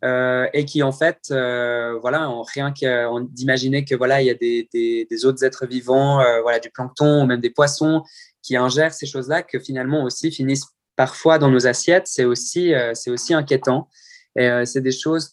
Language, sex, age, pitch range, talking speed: English, male, 20-39, 125-145 Hz, 215 wpm